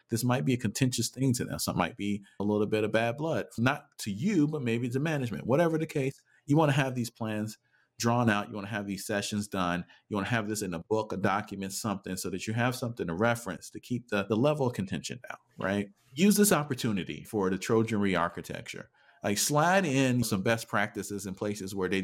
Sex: male